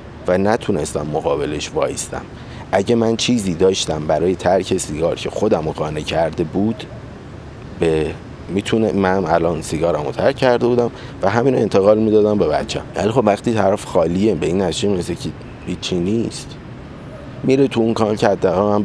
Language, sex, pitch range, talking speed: Persian, male, 85-110 Hz, 155 wpm